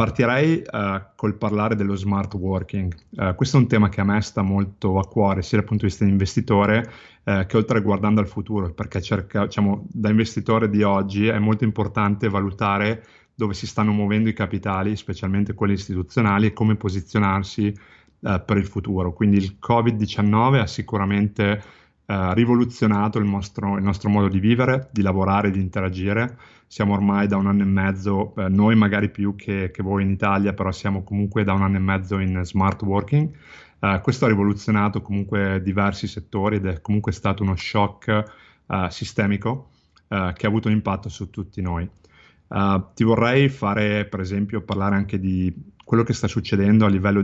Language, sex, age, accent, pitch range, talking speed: Italian, male, 30-49, native, 95-110 Hz, 175 wpm